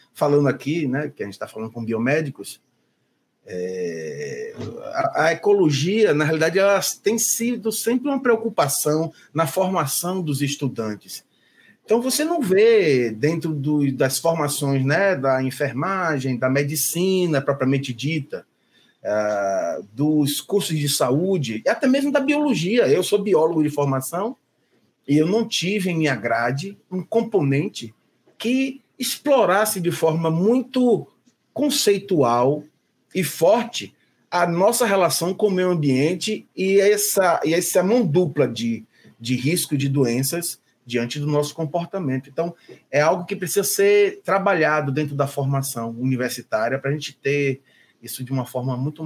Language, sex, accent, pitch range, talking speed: Portuguese, male, Brazilian, 135-200 Hz, 140 wpm